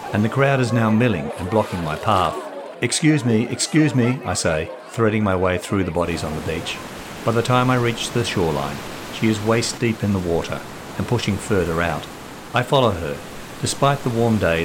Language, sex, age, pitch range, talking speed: English, male, 50-69, 90-120 Hz, 205 wpm